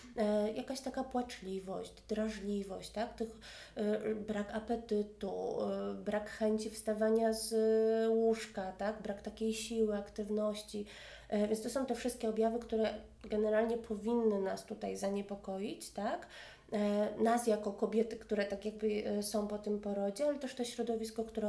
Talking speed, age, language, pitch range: 145 wpm, 30-49, Polish, 205-225 Hz